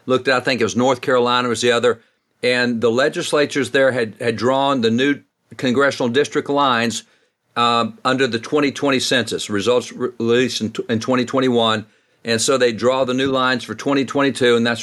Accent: American